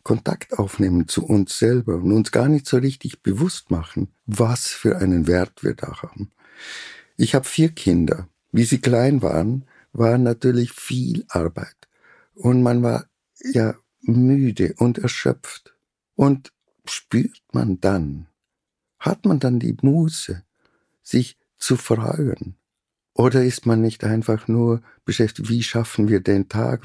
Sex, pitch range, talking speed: male, 100-125 Hz, 140 wpm